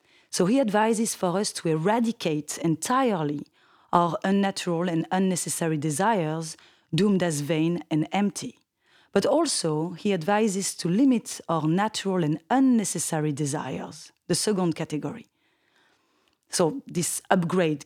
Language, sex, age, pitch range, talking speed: English, female, 30-49, 160-210 Hz, 120 wpm